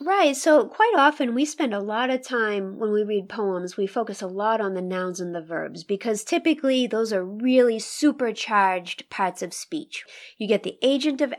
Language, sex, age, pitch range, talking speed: English, female, 30-49, 200-260 Hz, 200 wpm